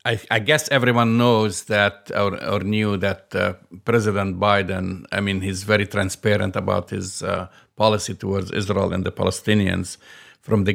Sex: male